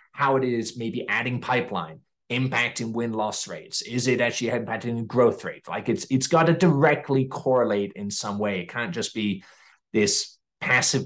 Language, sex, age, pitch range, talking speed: English, male, 30-49, 115-150 Hz, 170 wpm